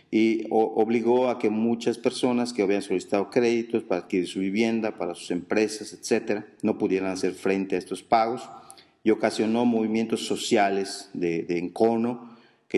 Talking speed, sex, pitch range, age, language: 155 wpm, male, 95-110 Hz, 40-59, English